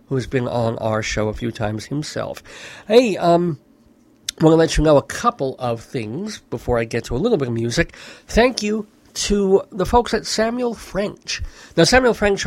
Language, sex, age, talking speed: English, male, 50-69, 195 wpm